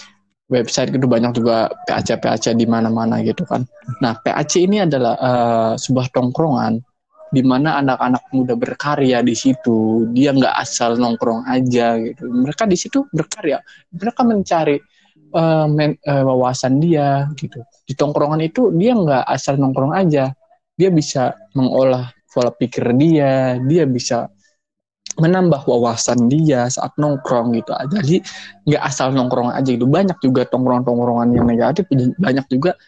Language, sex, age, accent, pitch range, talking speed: Indonesian, male, 20-39, native, 125-165 Hz, 140 wpm